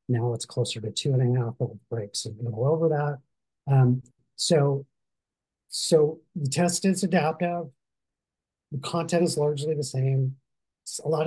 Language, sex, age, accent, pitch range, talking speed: English, male, 40-59, American, 120-145 Hz, 155 wpm